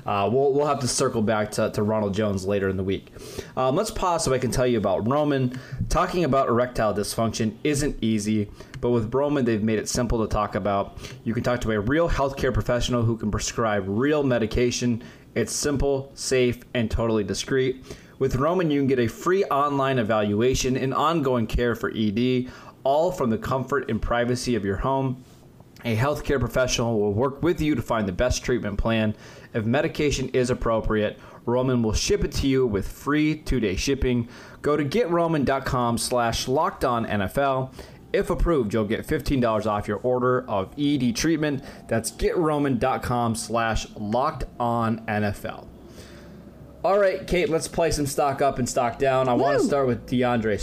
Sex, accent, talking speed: male, American, 175 wpm